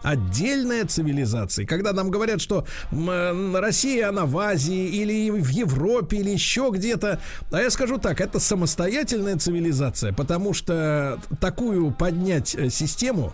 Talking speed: 125 wpm